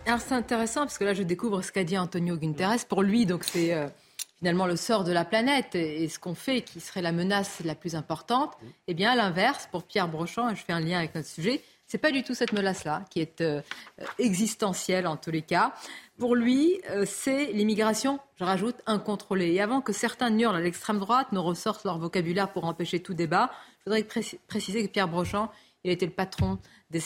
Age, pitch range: 40-59, 175-230 Hz